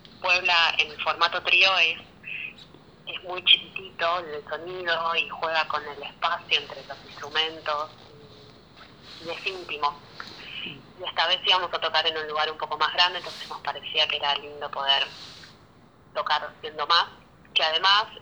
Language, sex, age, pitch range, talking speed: Spanish, female, 20-39, 150-175 Hz, 155 wpm